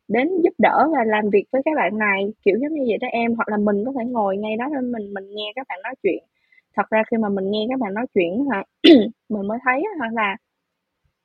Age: 20-39